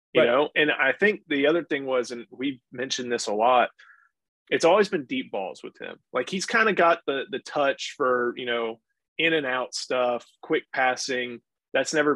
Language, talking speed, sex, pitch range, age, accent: English, 200 wpm, male, 120-155 Hz, 30-49, American